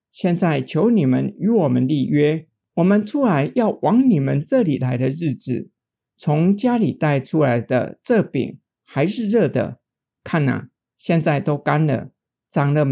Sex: male